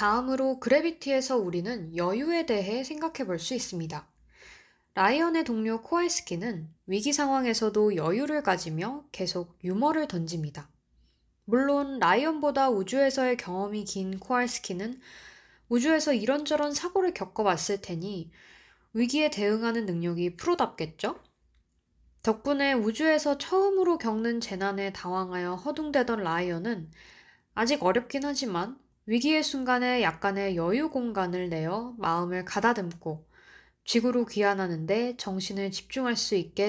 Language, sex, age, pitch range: Korean, female, 20-39, 185-280 Hz